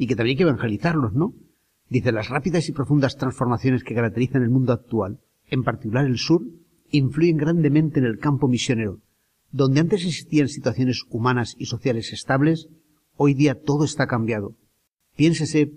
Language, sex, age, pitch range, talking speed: Spanish, male, 40-59, 120-155 Hz, 160 wpm